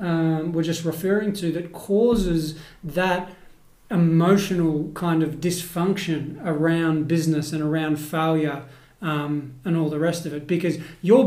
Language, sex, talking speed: English, male, 140 wpm